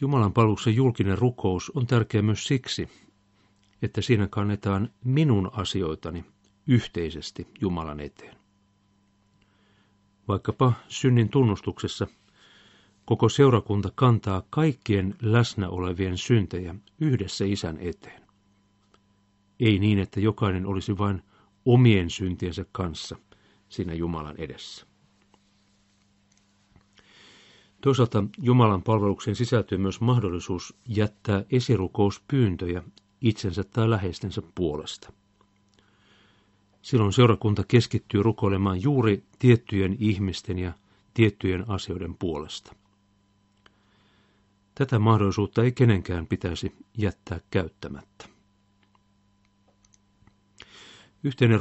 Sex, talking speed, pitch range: male, 85 wpm, 100-110 Hz